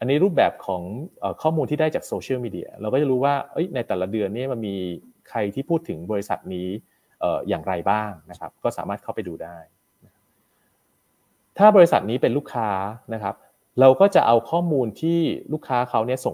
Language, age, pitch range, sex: Thai, 30-49, 95-135 Hz, male